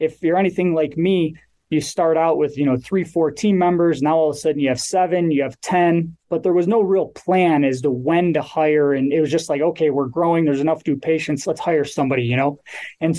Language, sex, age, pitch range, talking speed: English, male, 20-39, 145-175 Hz, 250 wpm